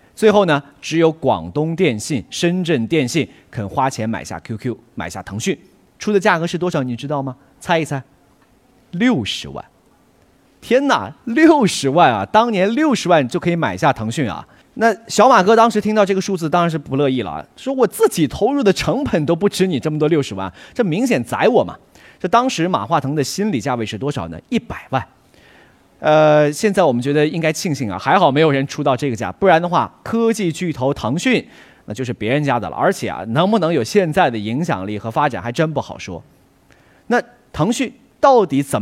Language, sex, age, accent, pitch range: Chinese, male, 30-49, native, 135-205 Hz